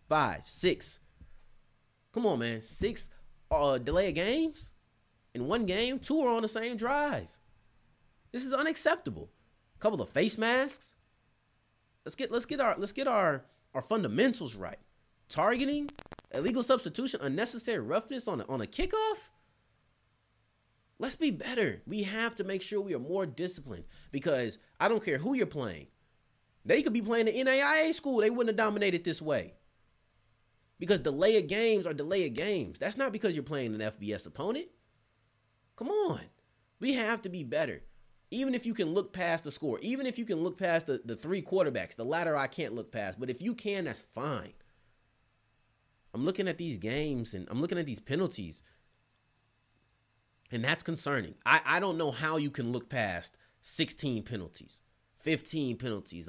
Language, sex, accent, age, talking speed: English, male, American, 30-49, 170 wpm